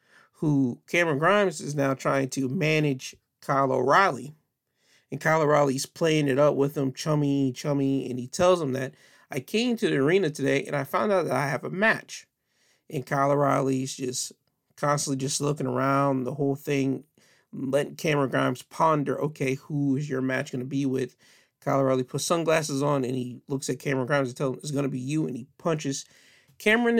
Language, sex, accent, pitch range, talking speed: English, male, American, 135-150 Hz, 195 wpm